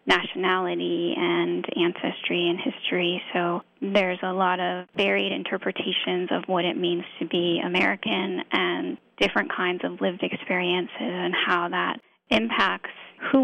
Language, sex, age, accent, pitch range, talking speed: English, female, 10-29, American, 180-245 Hz, 135 wpm